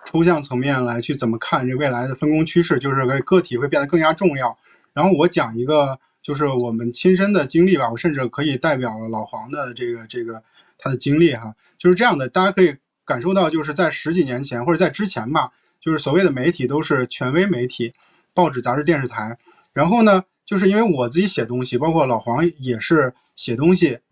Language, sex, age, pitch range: Chinese, male, 20-39, 125-175 Hz